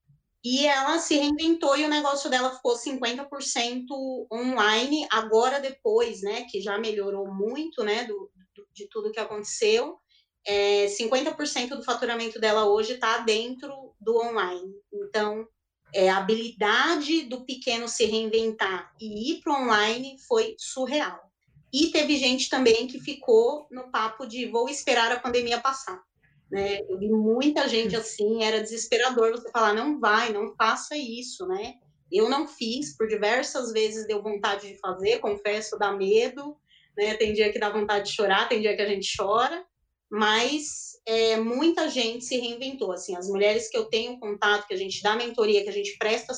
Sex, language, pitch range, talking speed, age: female, Portuguese, 210-270 Hz, 165 wpm, 20-39